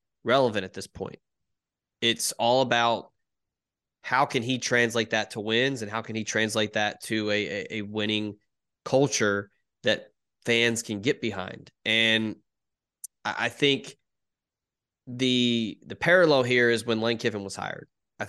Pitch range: 110-130 Hz